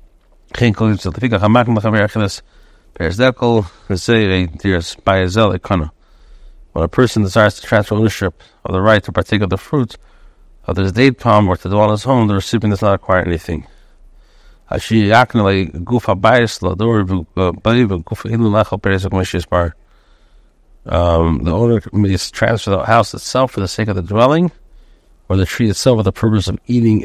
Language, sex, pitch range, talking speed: English, male, 95-110 Hz, 120 wpm